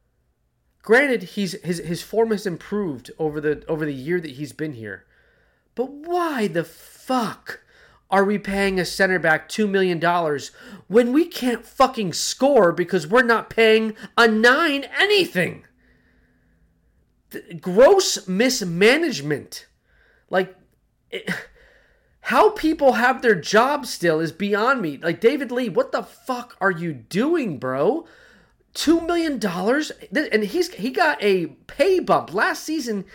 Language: English